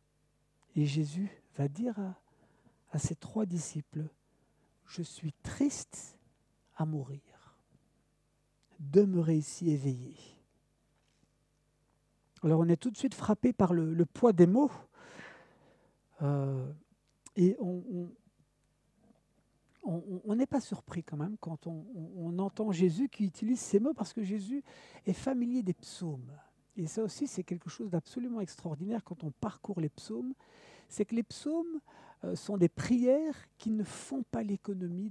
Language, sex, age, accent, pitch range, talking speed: French, male, 60-79, French, 165-230 Hz, 145 wpm